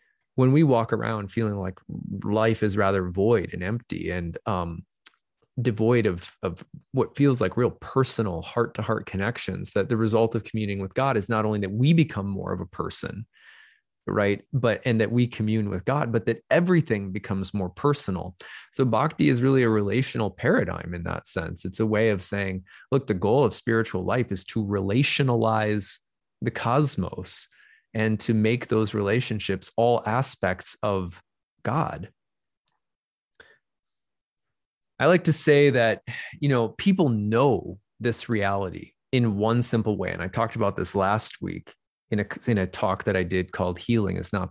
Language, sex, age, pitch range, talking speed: English, male, 20-39, 95-120 Hz, 170 wpm